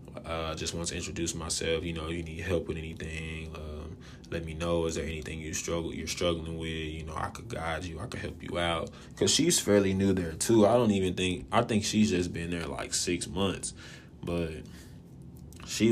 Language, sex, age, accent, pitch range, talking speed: English, male, 20-39, American, 80-90 Hz, 215 wpm